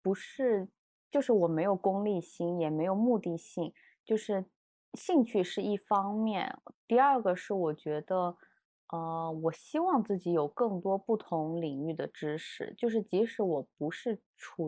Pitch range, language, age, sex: 170-215 Hz, Chinese, 20-39, female